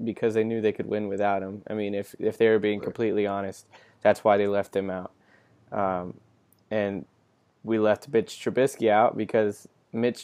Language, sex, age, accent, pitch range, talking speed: English, male, 10-29, American, 105-115 Hz, 190 wpm